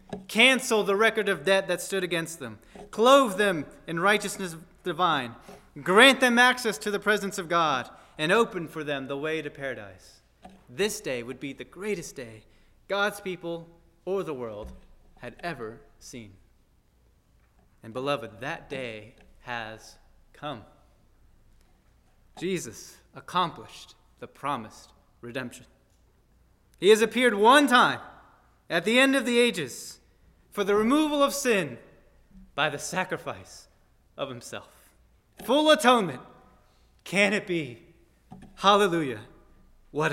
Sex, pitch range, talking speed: male, 145-205 Hz, 125 wpm